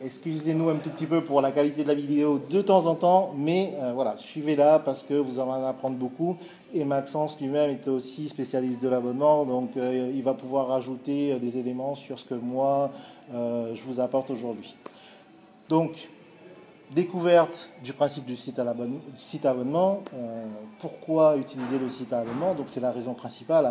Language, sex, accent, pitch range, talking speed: French, male, French, 130-155 Hz, 185 wpm